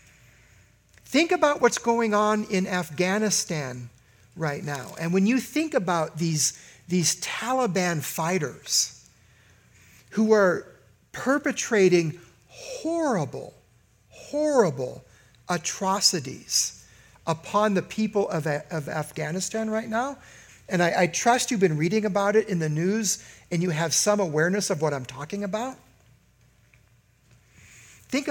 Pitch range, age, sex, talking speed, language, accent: 145-220 Hz, 50-69, male, 115 wpm, English, American